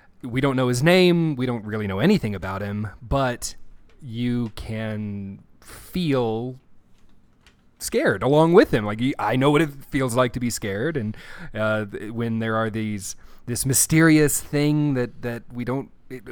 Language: English